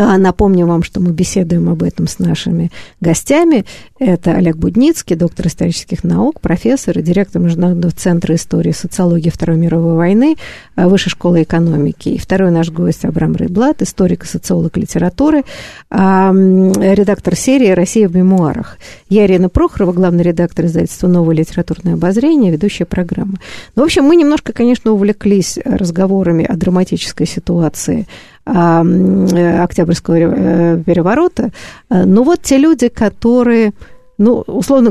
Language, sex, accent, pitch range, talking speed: Russian, female, native, 175-215 Hz, 130 wpm